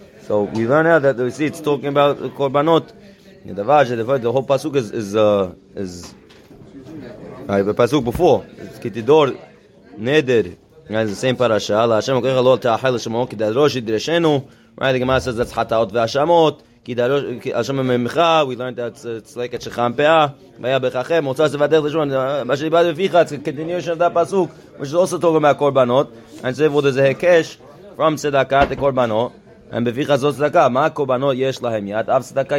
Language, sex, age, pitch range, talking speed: English, male, 20-39, 120-145 Hz, 115 wpm